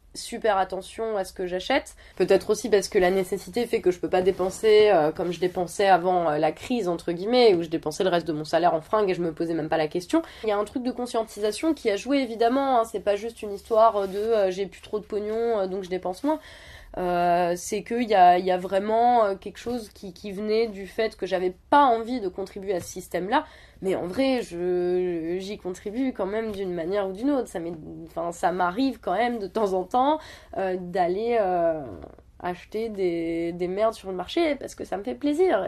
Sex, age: female, 20-39